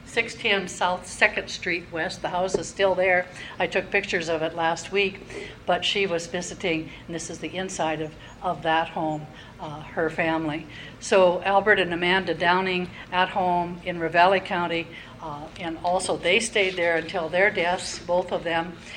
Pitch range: 165-190 Hz